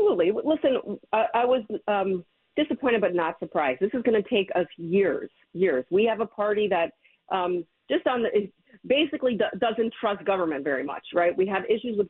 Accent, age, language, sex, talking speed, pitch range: American, 40-59, English, female, 200 wpm, 180-235 Hz